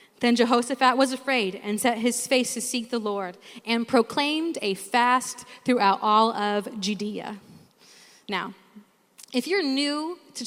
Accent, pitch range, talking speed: American, 215-270 Hz, 145 wpm